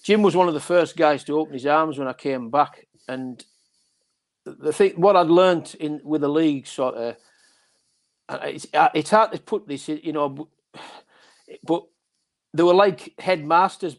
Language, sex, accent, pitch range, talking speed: English, male, British, 140-180 Hz, 175 wpm